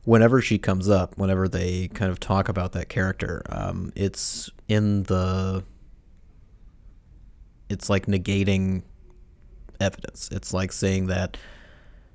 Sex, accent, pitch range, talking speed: male, American, 90-100 Hz, 120 wpm